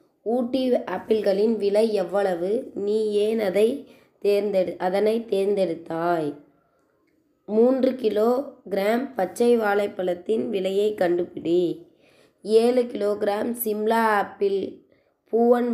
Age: 20-39